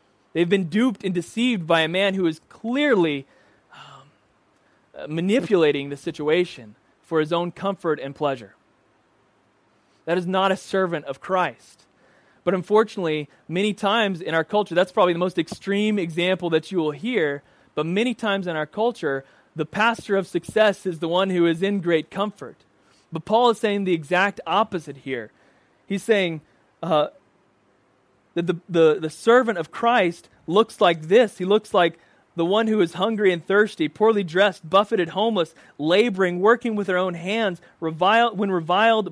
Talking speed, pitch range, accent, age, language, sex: 165 wpm, 160-210 Hz, American, 20-39, English, male